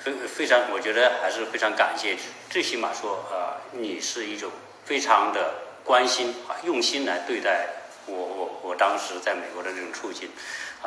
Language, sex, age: Chinese, male, 50-69